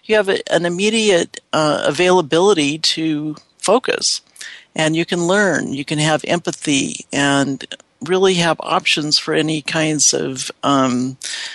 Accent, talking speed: American, 130 wpm